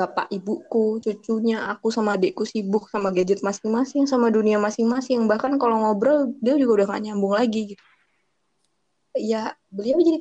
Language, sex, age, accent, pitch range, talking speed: English, female, 20-39, Indonesian, 200-240 Hz, 155 wpm